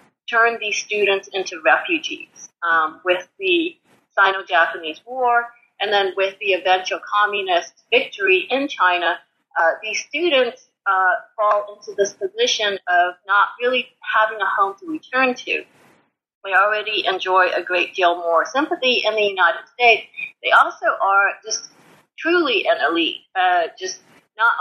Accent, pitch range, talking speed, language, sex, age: American, 195-260 Hz, 140 wpm, English, female, 30-49